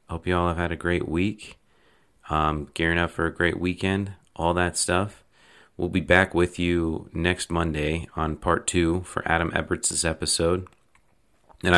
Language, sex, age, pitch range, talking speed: English, male, 30-49, 75-85 Hz, 170 wpm